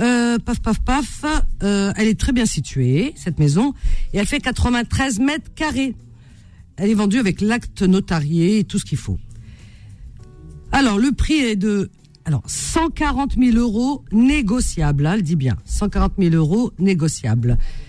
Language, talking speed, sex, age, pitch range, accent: French, 160 wpm, female, 50-69, 150-240 Hz, French